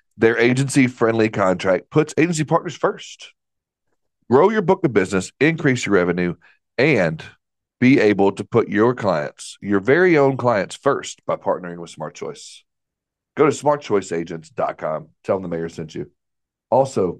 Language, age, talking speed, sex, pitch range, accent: English, 40-59, 145 wpm, male, 90-115 Hz, American